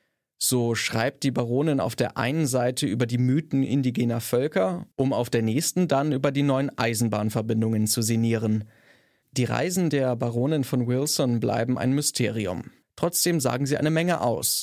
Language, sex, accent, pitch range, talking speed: German, male, German, 120-140 Hz, 160 wpm